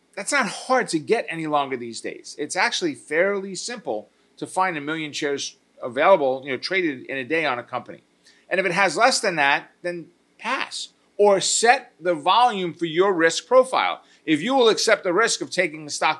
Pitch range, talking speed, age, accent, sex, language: 150-205 Hz, 205 wpm, 50-69, American, male, English